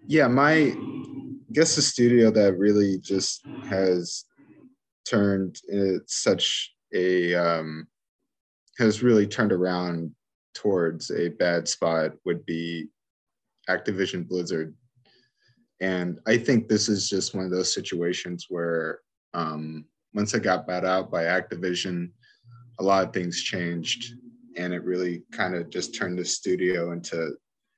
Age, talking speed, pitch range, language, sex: 20-39, 130 wpm, 90-110 Hz, English, male